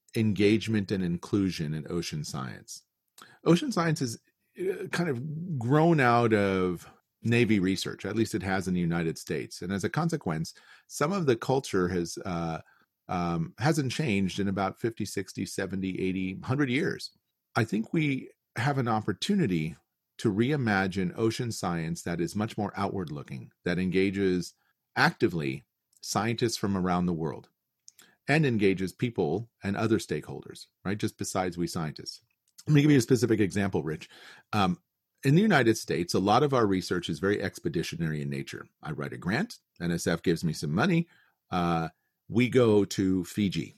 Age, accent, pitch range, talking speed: 40-59, American, 90-120 Hz, 160 wpm